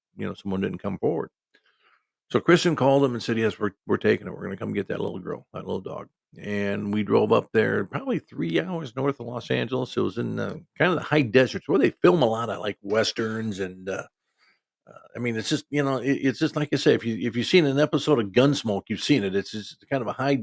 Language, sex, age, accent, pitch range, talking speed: English, male, 50-69, American, 105-130 Hz, 265 wpm